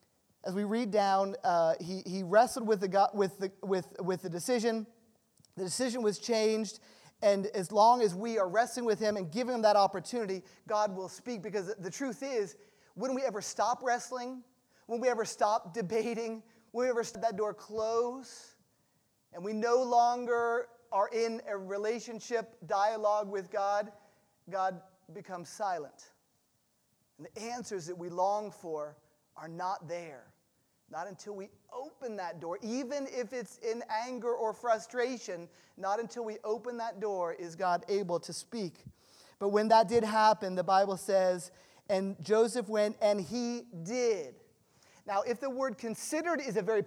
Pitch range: 195-240 Hz